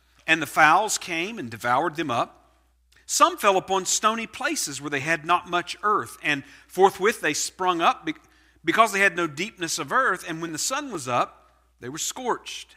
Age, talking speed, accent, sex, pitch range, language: 50-69, 190 wpm, American, male, 130-190 Hz, English